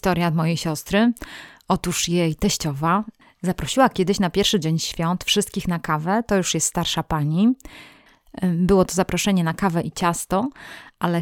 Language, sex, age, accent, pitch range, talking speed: Polish, female, 20-39, native, 170-200 Hz, 150 wpm